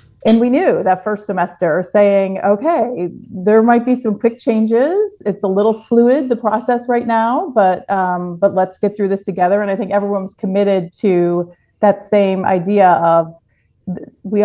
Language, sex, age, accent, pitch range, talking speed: English, female, 40-59, American, 185-220 Hz, 170 wpm